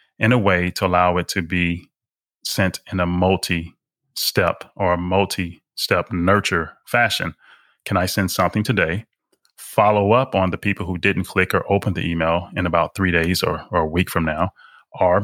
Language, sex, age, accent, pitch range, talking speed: English, male, 30-49, American, 90-105 Hz, 175 wpm